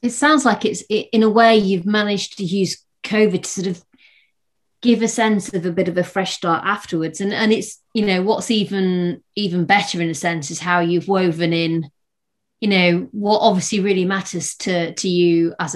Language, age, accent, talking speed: English, 30-49, British, 205 wpm